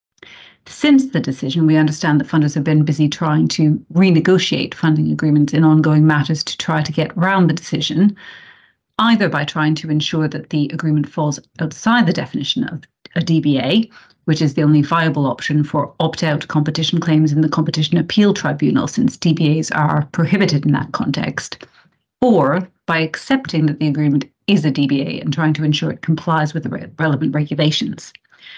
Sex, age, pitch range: female, 40-59, 150-170 Hz